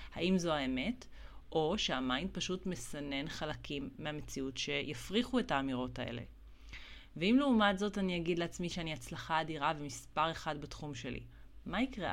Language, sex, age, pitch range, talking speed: Hebrew, female, 30-49, 150-215 Hz, 140 wpm